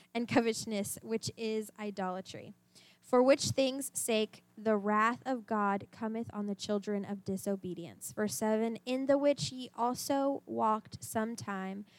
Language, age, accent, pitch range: English, 10-29, American, 205-250 Hz